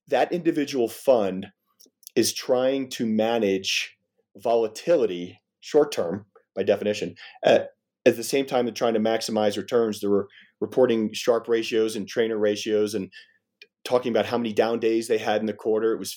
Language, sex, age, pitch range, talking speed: English, male, 30-49, 105-130 Hz, 165 wpm